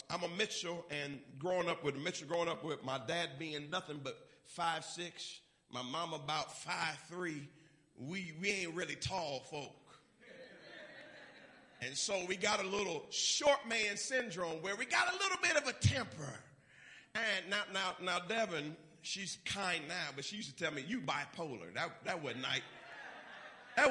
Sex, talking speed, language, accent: male, 165 wpm, English, American